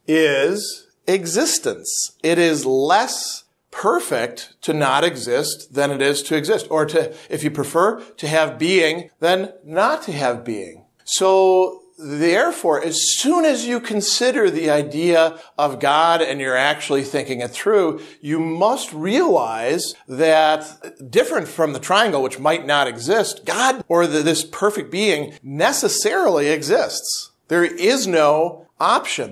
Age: 50-69